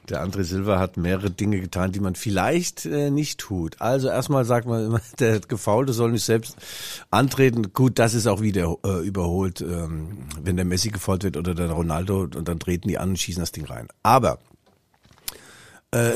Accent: German